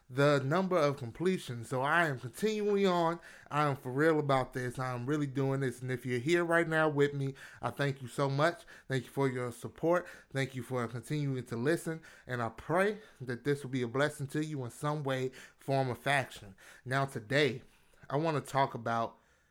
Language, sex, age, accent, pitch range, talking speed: English, male, 30-49, American, 125-155 Hz, 210 wpm